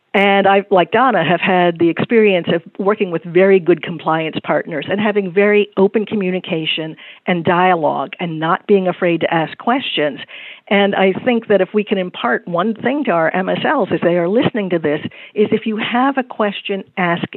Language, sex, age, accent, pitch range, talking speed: English, female, 50-69, American, 170-210 Hz, 190 wpm